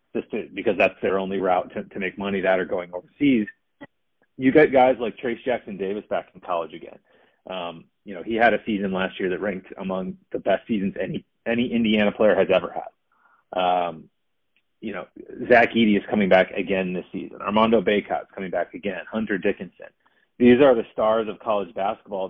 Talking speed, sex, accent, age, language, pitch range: 200 wpm, male, American, 30-49, English, 100-130 Hz